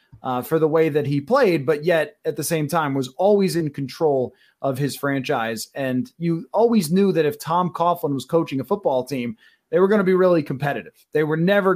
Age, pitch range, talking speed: 20-39, 145-190 Hz, 220 wpm